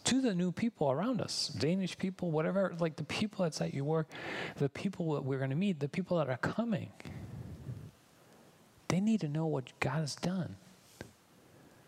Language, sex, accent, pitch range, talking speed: English, male, American, 130-170 Hz, 180 wpm